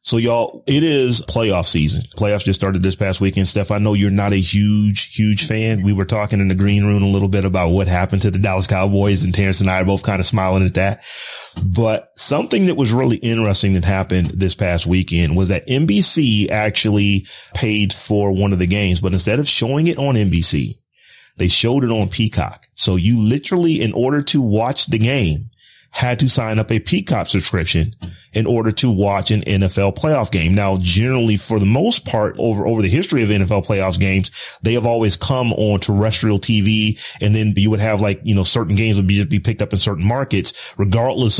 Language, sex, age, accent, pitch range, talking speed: English, male, 30-49, American, 95-115 Hz, 210 wpm